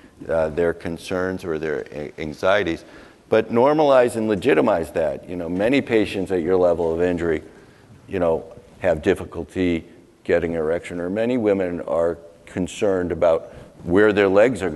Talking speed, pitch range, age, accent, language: 145 wpm, 90-100 Hz, 50-69, American, English